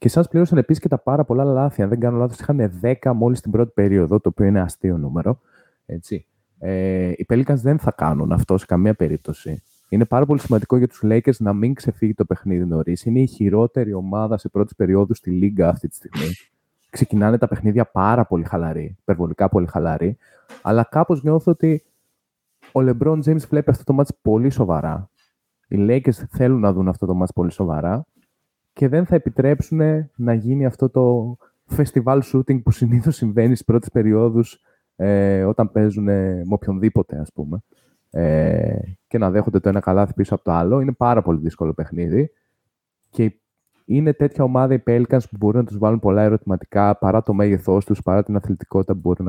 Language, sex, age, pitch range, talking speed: Greek, male, 20-39, 95-125 Hz, 185 wpm